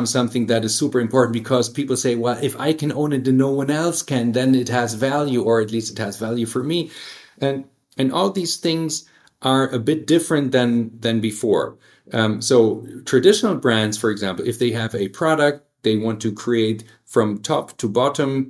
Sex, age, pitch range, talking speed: male, 40-59, 115-145 Hz, 200 wpm